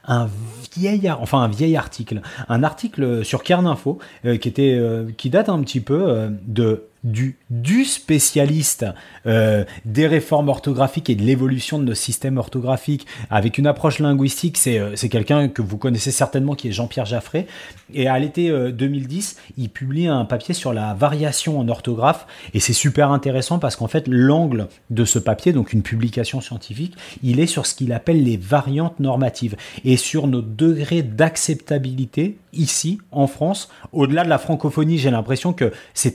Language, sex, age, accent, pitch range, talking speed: French, male, 30-49, French, 120-150 Hz, 175 wpm